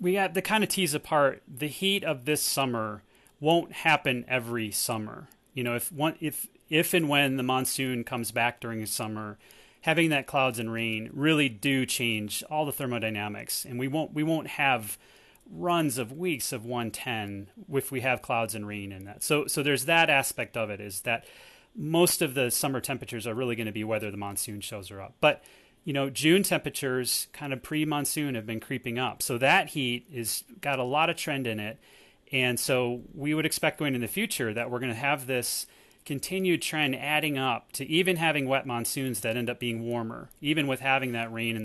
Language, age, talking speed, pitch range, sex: English, 30-49, 205 wpm, 115-150 Hz, male